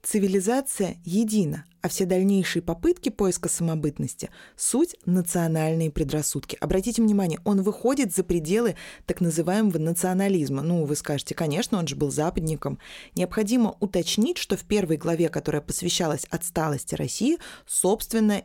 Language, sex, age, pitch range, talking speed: Russian, female, 20-39, 150-195 Hz, 130 wpm